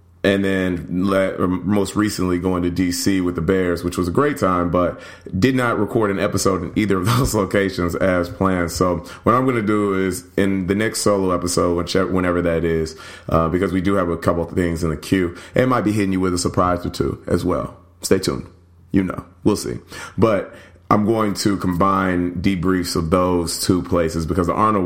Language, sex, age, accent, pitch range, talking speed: English, male, 30-49, American, 85-105 Hz, 205 wpm